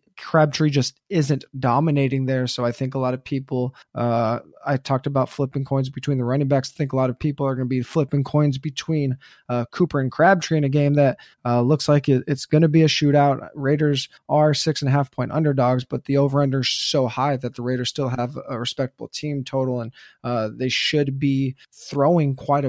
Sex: male